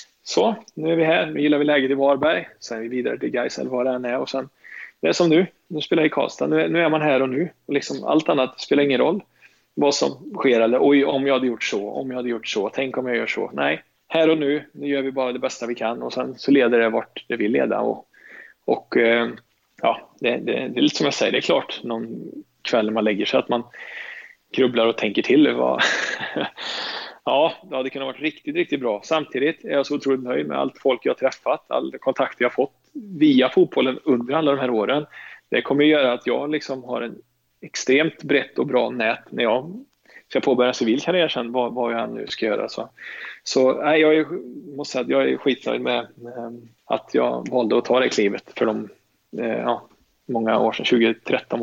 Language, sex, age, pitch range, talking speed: Swedish, male, 20-39, 115-155 Hz, 225 wpm